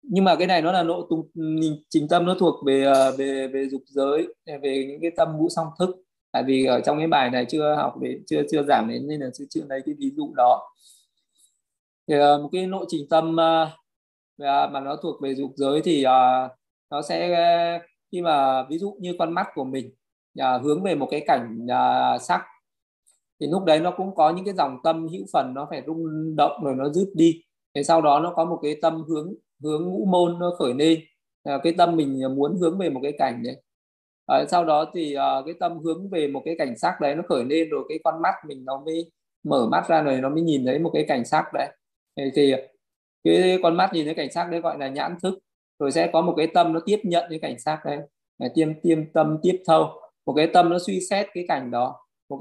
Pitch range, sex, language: 140-170 Hz, male, Vietnamese